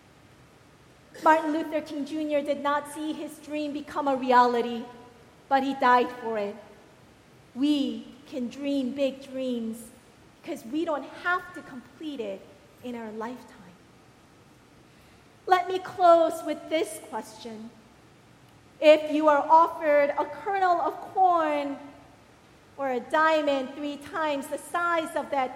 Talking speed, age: 130 wpm, 40-59